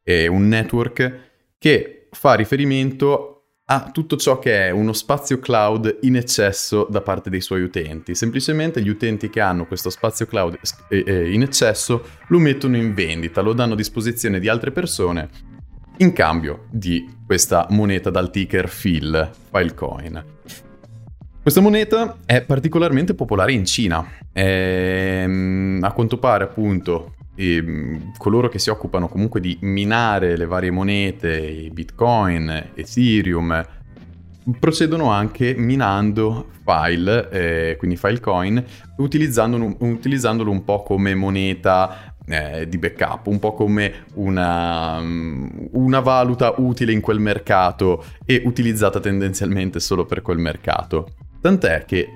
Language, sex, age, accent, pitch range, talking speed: Italian, male, 20-39, native, 90-120 Hz, 130 wpm